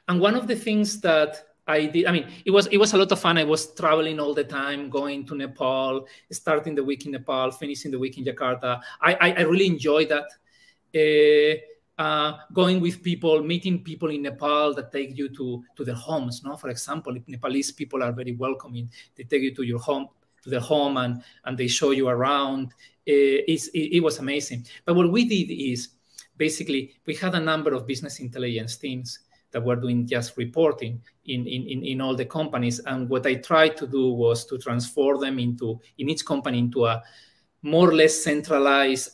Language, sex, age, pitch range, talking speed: English, male, 40-59, 125-160 Hz, 200 wpm